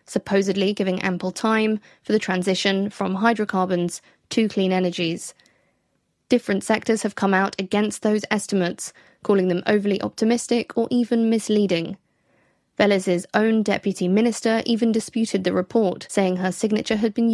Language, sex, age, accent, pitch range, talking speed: English, female, 20-39, British, 185-225 Hz, 140 wpm